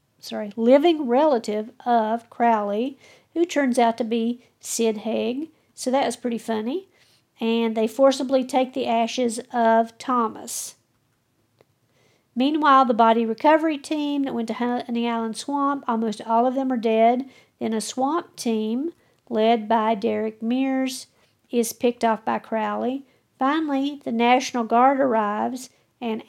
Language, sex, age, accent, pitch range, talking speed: English, female, 50-69, American, 230-270 Hz, 140 wpm